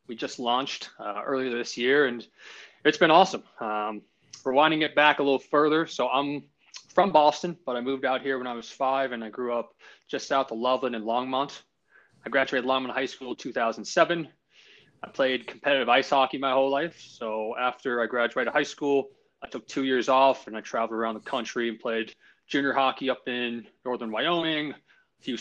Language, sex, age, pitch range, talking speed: English, male, 20-39, 120-140 Hz, 200 wpm